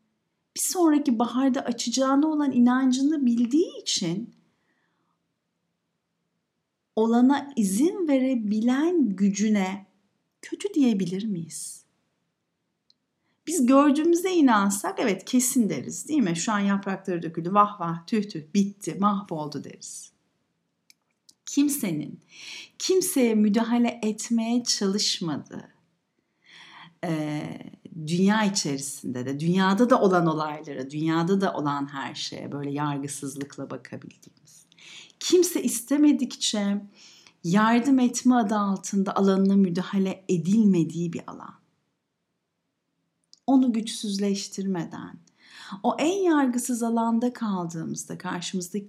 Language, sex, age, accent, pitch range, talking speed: Turkish, female, 50-69, native, 180-255 Hz, 90 wpm